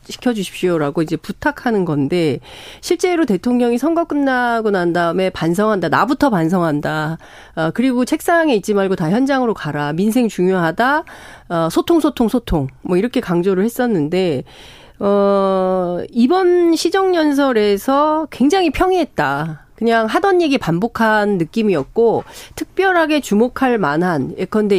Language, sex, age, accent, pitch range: Korean, female, 40-59, native, 170-260 Hz